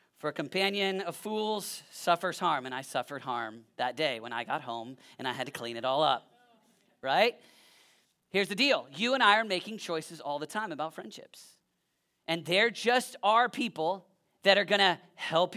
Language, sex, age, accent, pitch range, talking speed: English, male, 40-59, American, 175-220 Hz, 190 wpm